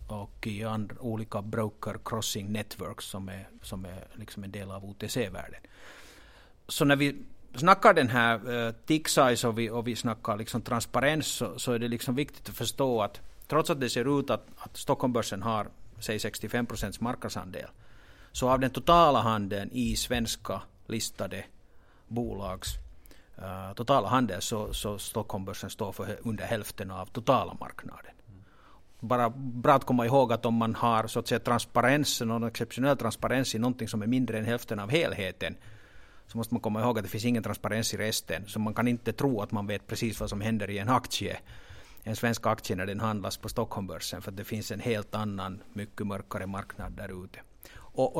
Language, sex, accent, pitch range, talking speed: Swedish, male, Finnish, 105-125 Hz, 185 wpm